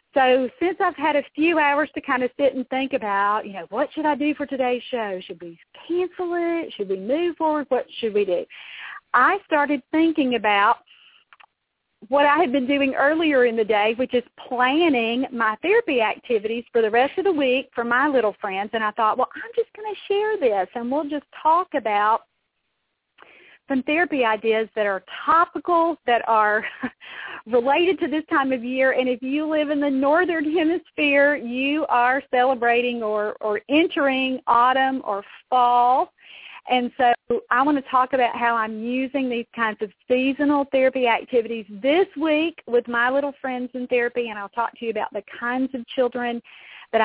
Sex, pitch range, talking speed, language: female, 235-295 Hz, 185 wpm, English